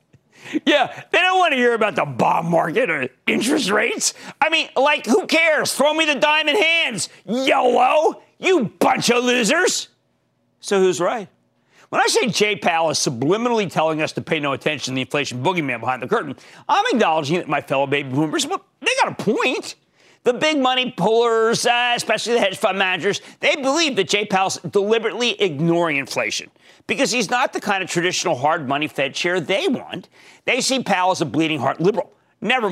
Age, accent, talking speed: 40-59, American, 190 wpm